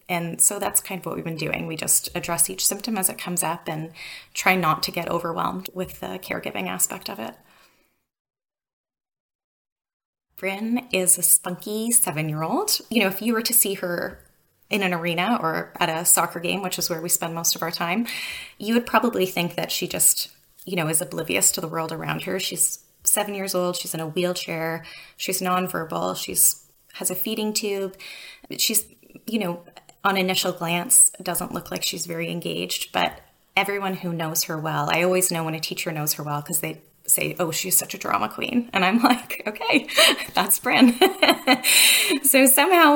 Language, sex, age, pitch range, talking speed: English, female, 20-39, 170-215 Hz, 190 wpm